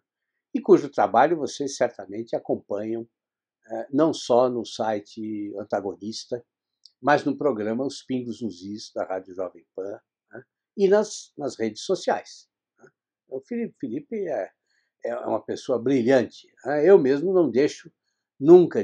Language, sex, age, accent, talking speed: Portuguese, male, 60-79, Brazilian, 115 wpm